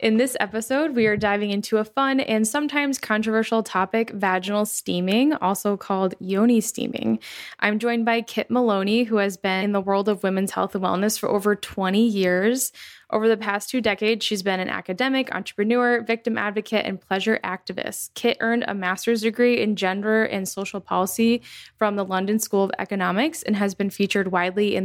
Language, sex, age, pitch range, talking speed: English, female, 10-29, 195-230 Hz, 185 wpm